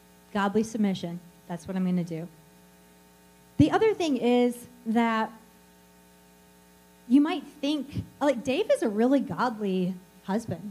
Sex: female